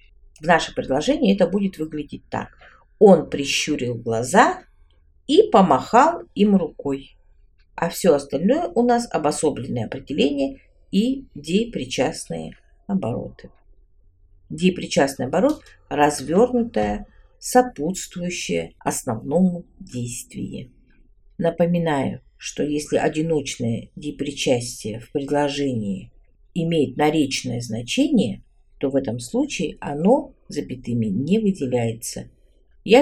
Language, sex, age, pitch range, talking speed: Russian, female, 50-69, 120-200 Hz, 90 wpm